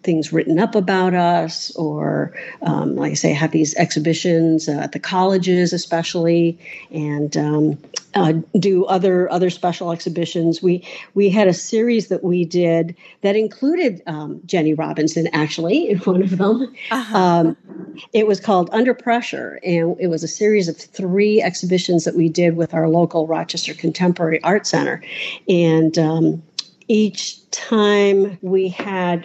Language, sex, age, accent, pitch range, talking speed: English, female, 50-69, American, 165-190 Hz, 150 wpm